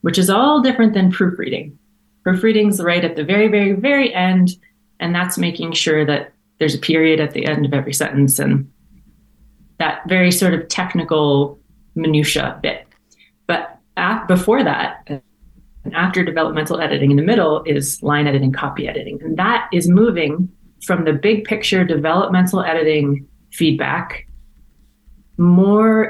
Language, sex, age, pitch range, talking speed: English, female, 30-49, 150-190 Hz, 145 wpm